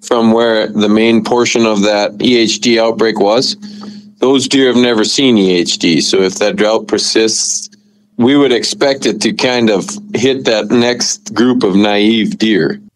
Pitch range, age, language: 105-140 Hz, 40-59, English